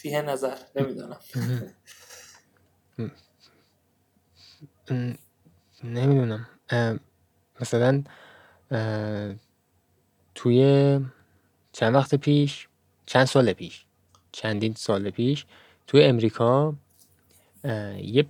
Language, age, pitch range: Persian, 20-39, 105-150 Hz